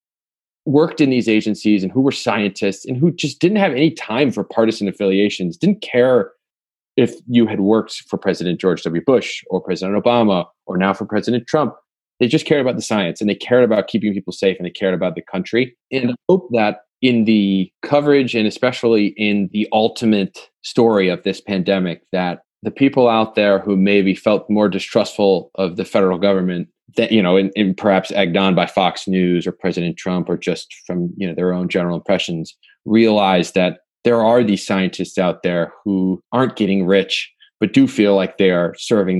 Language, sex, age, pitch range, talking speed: English, male, 30-49, 95-115 Hz, 195 wpm